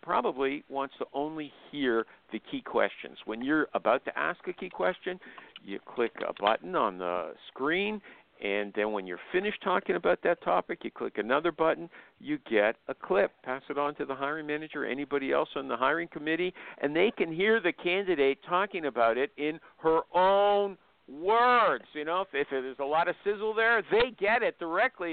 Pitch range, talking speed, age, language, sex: 145-215 Hz, 190 wpm, 50-69, English, male